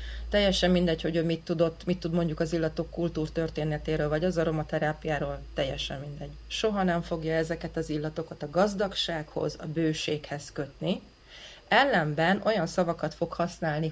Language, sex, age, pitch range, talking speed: Hungarian, female, 30-49, 155-180 Hz, 140 wpm